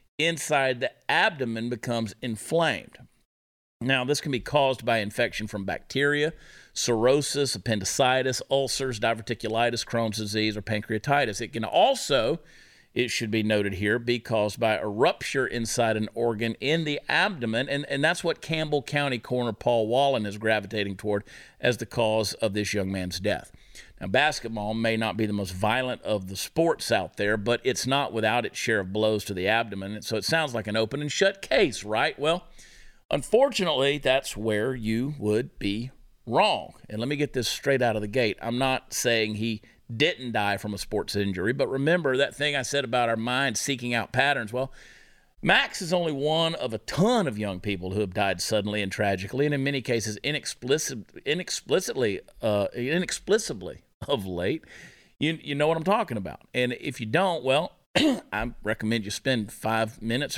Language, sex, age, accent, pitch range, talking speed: English, male, 50-69, American, 105-135 Hz, 180 wpm